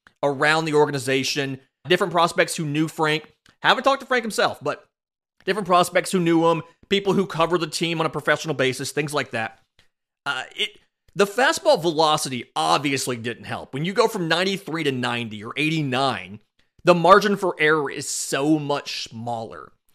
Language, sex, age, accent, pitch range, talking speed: English, male, 30-49, American, 145-205 Hz, 170 wpm